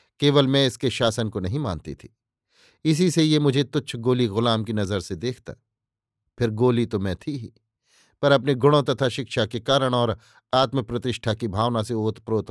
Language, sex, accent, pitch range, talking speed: Hindi, male, native, 110-135 Hz, 180 wpm